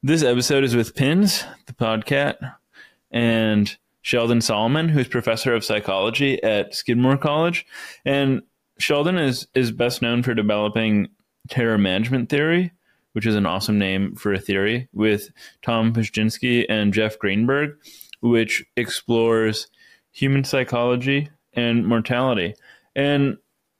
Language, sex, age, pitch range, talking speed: English, male, 20-39, 110-135 Hz, 125 wpm